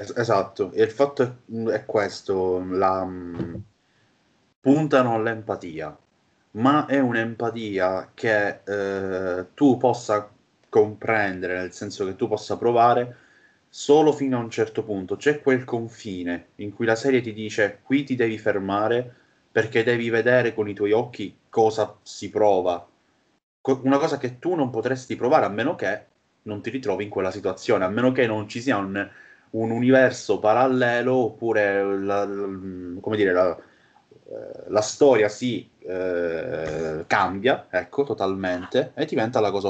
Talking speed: 140 wpm